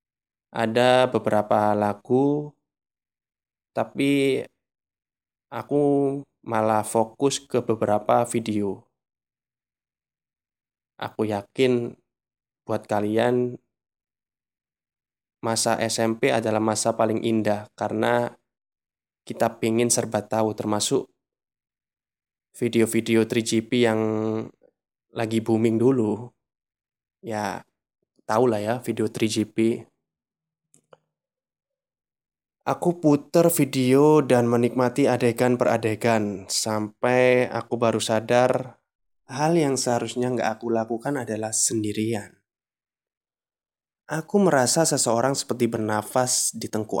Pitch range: 110-125 Hz